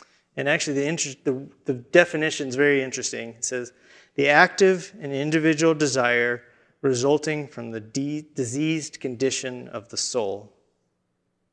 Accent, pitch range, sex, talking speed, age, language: American, 135-175 Hz, male, 125 wpm, 30-49, English